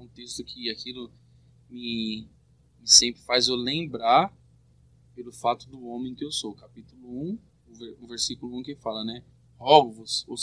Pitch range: 125-185 Hz